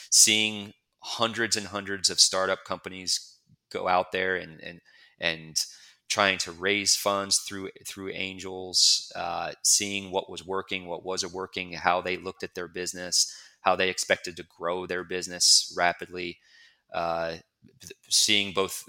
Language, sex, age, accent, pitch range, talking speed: English, male, 30-49, American, 85-95 Hz, 145 wpm